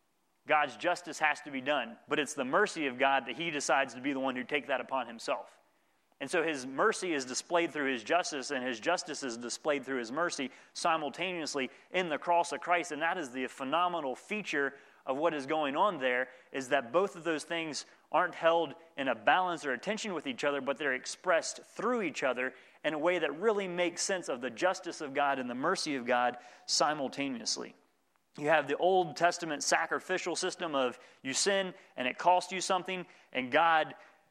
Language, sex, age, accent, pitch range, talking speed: English, male, 30-49, American, 135-180 Hz, 205 wpm